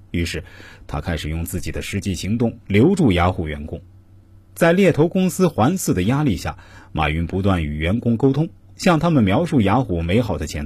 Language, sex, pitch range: Chinese, male, 90-120 Hz